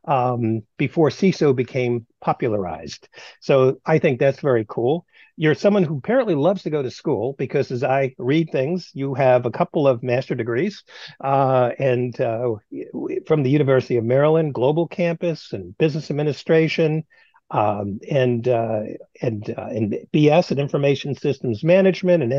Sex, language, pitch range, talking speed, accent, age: male, English, 120-165 Hz, 155 wpm, American, 50-69